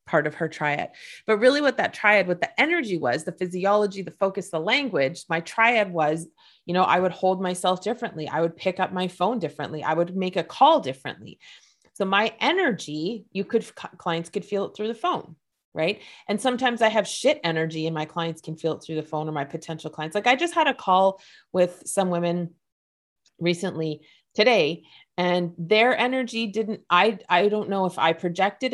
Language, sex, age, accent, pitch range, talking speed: English, female, 30-49, American, 165-220 Hz, 200 wpm